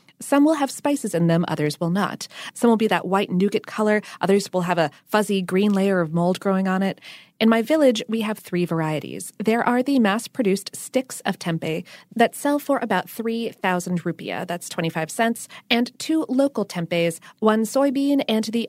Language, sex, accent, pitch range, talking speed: English, female, American, 180-250 Hz, 190 wpm